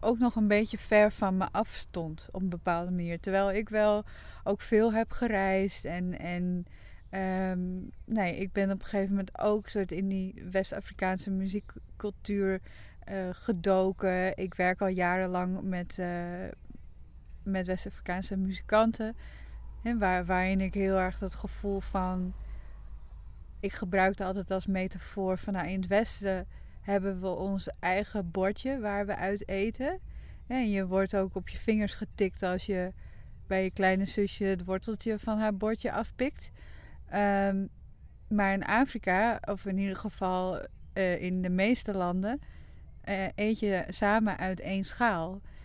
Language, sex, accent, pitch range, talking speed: Dutch, female, Dutch, 185-205 Hz, 150 wpm